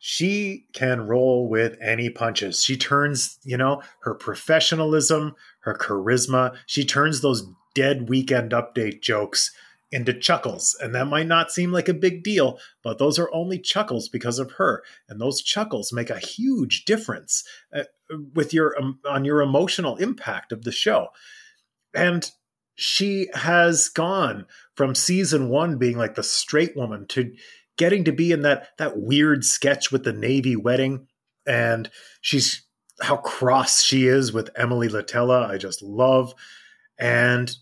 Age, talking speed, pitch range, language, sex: 30-49, 150 wpm, 120-160 Hz, English, male